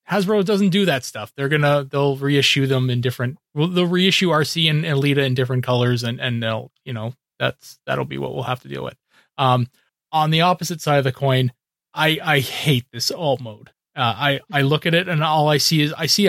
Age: 30-49